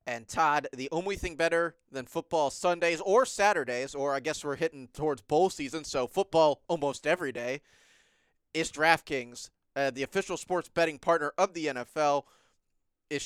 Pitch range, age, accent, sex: 135-165 Hz, 30-49, American, male